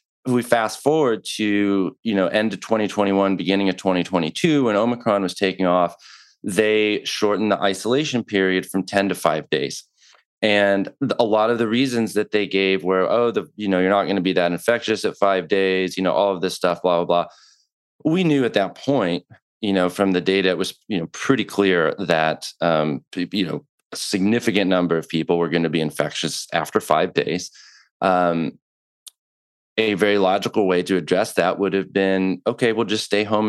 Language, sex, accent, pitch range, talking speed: English, male, American, 95-115 Hz, 195 wpm